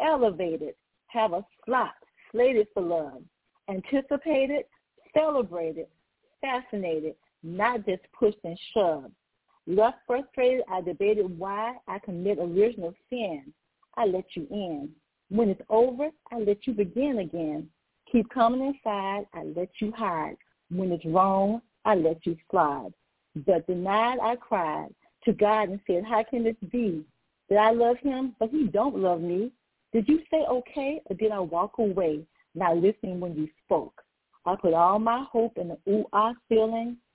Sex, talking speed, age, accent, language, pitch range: female, 150 wpm, 40-59, American, English, 175-235 Hz